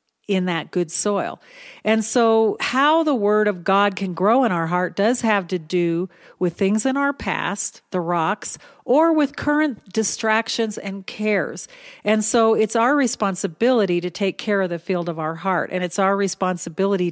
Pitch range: 180-225 Hz